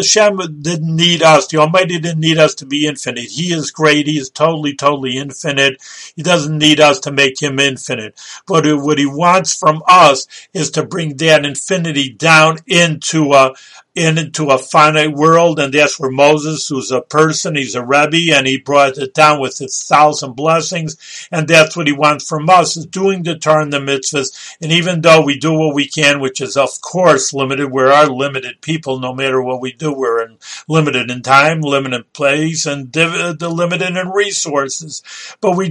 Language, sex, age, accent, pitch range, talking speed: English, male, 50-69, American, 140-165 Hz, 190 wpm